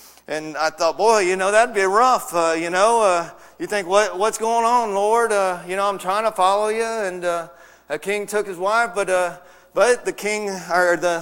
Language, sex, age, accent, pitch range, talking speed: English, male, 40-59, American, 200-245 Hz, 225 wpm